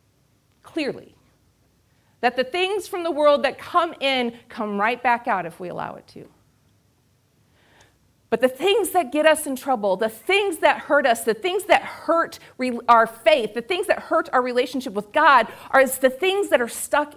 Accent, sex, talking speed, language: American, female, 180 wpm, English